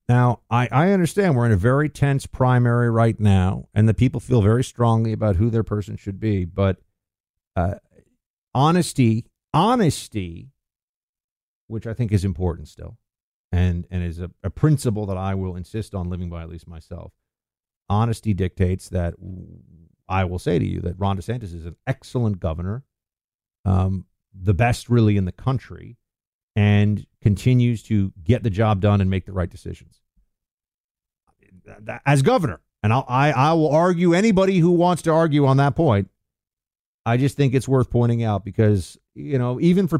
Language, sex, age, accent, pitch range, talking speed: English, male, 50-69, American, 95-135 Hz, 170 wpm